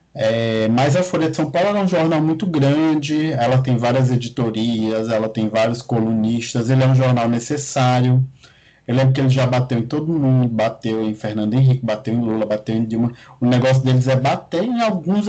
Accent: Brazilian